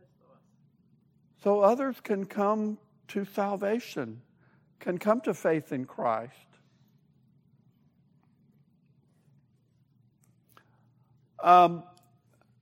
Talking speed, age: 60 wpm, 60-79